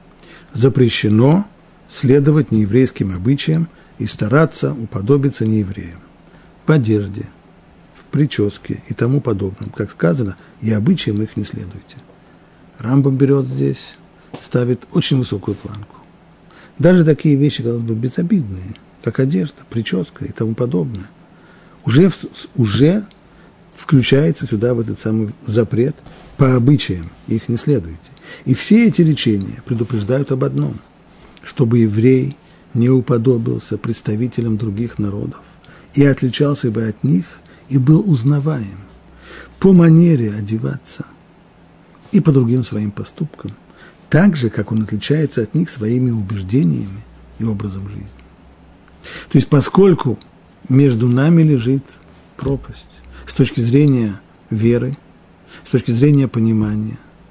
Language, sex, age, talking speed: Russian, male, 50-69, 115 wpm